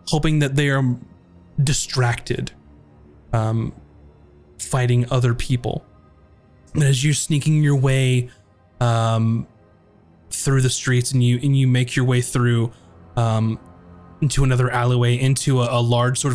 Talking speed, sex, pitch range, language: 130 wpm, male, 115-140 Hz, English